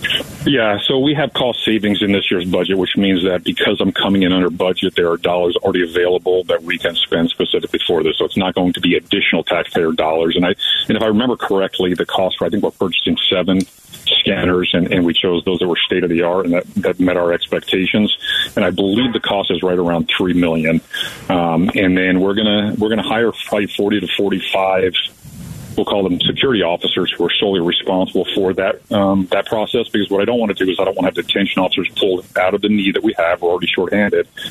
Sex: male